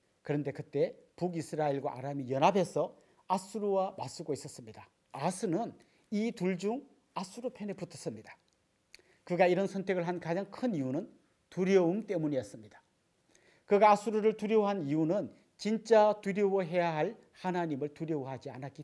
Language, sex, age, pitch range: Korean, male, 40-59, 150-205 Hz